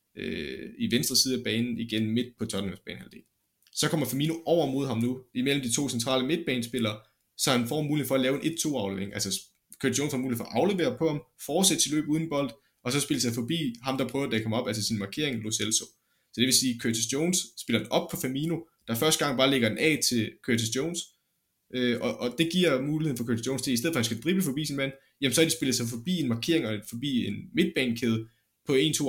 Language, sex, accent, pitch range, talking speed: Danish, male, native, 115-145 Hz, 250 wpm